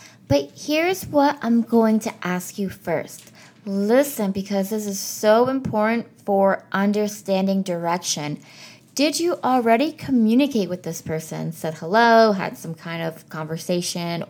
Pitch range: 195-270 Hz